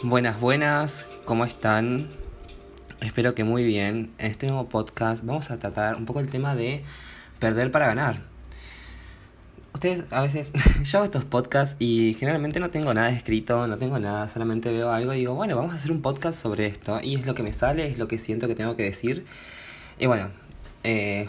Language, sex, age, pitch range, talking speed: Spanish, male, 20-39, 110-140 Hz, 195 wpm